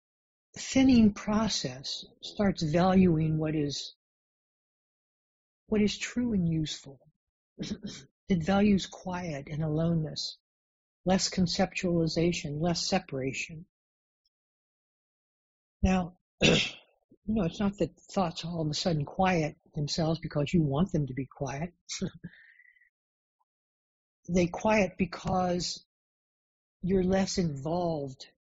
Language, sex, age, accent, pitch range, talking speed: English, male, 60-79, American, 155-190 Hz, 95 wpm